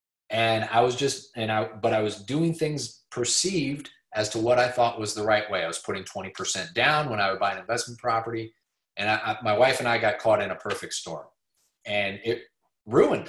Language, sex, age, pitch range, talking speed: English, male, 30-49, 110-130 Hz, 210 wpm